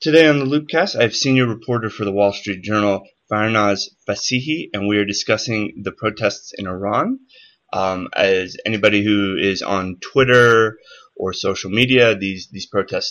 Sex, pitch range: male, 95-125 Hz